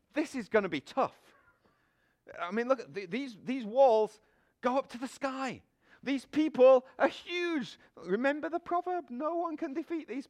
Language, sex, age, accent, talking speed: English, male, 40-59, British, 180 wpm